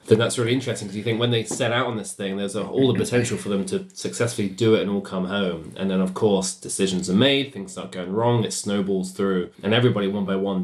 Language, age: English, 20-39